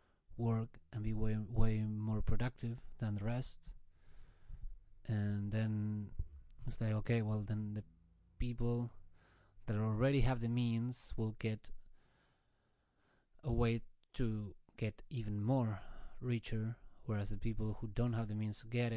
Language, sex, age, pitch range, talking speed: English, male, 30-49, 105-115 Hz, 135 wpm